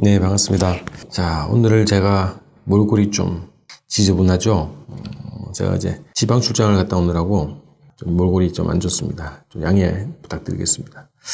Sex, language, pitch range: male, Korean, 90-130 Hz